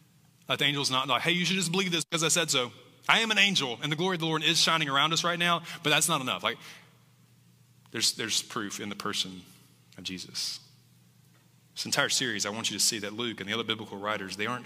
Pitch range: 105-160 Hz